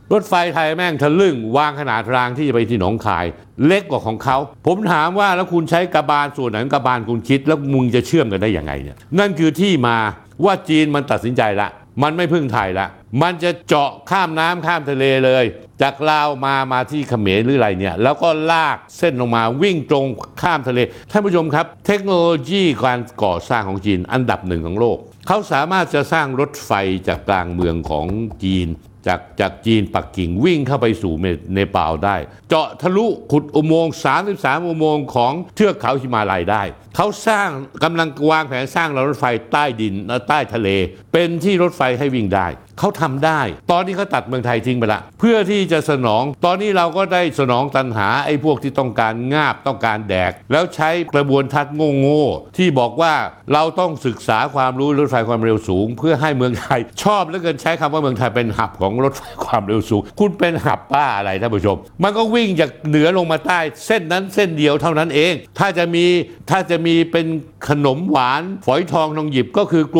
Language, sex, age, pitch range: Thai, male, 60-79, 115-165 Hz